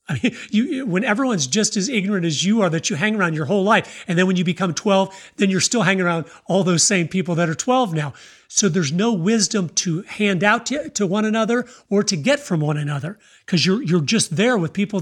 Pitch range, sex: 165-205 Hz, male